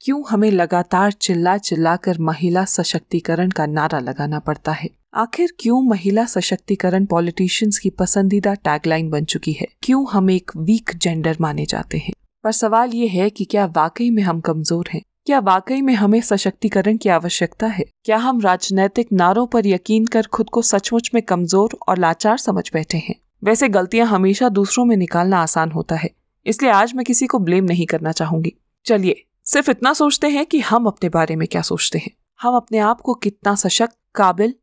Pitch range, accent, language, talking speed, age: 180-235 Hz, native, Hindi, 185 wpm, 20-39